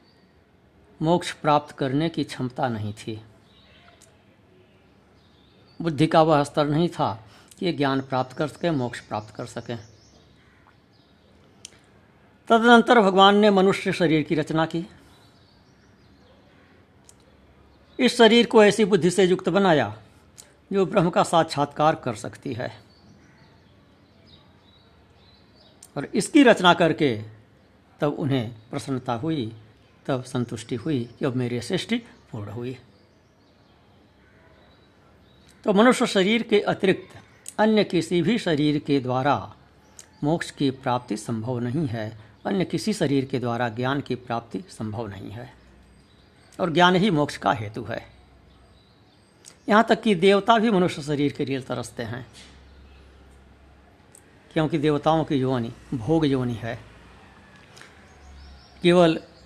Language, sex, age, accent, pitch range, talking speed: Hindi, female, 60-79, native, 100-160 Hz, 115 wpm